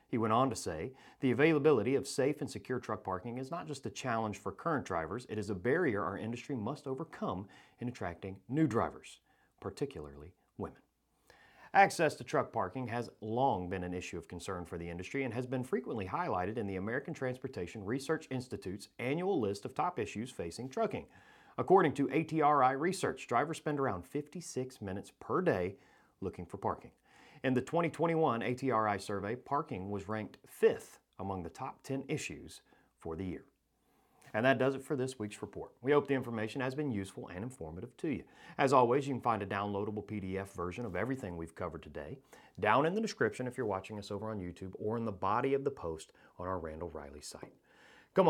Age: 40-59